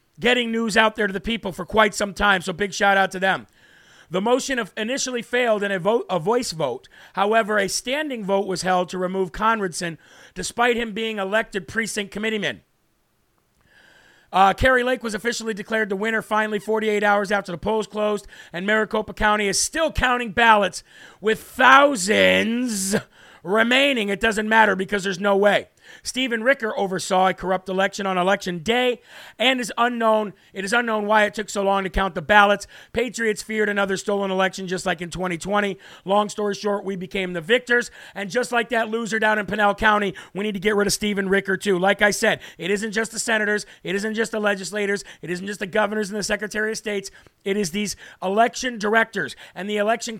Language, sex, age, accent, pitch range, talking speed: English, male, 40-59, American, 195-225 Hz, 195 wpm